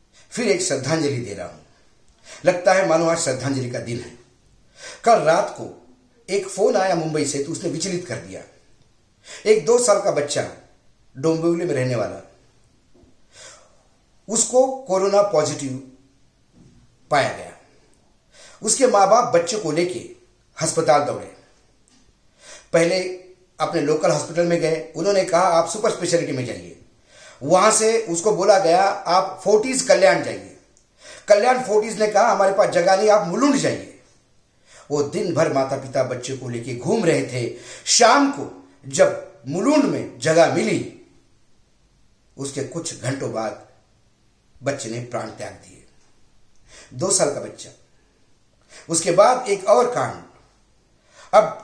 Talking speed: 140 wpm